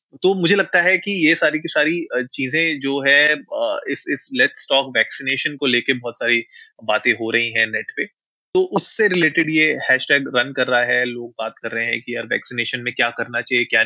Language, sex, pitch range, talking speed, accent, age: Hindi, male, 115-135 Hz, 210 wpm, native, 20-39